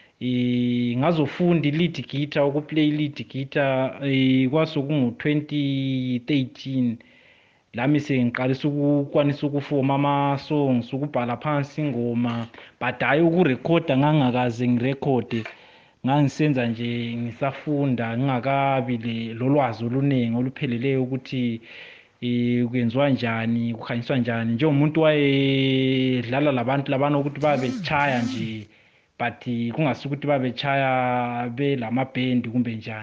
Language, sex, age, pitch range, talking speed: English, male, 30-49, 125-145 Hz, 95 wpm